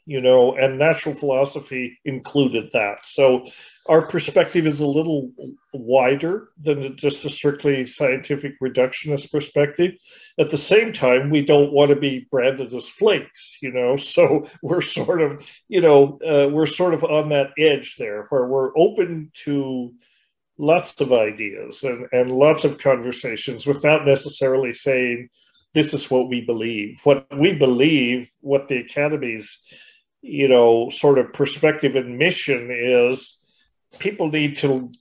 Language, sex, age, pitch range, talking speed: English, male, 40-59, 130-150 Hz, 145 wpm